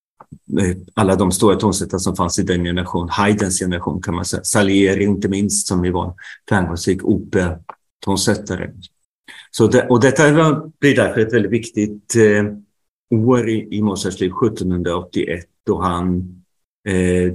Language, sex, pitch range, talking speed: Swedish, male, 95-110 Hz, 150 wpm